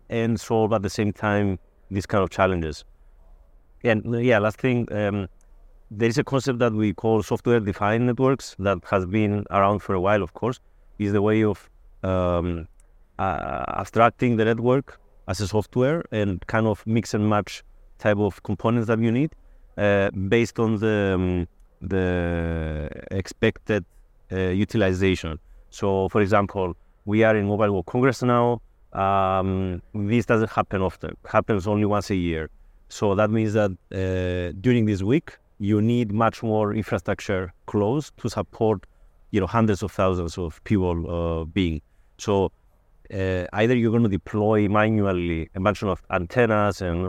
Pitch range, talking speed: 90-110 Hz, 160 wpm